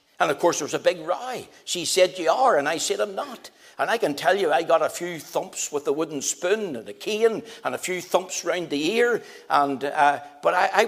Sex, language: male, English